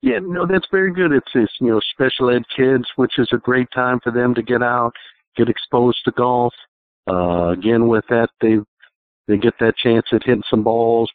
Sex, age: male, 60-79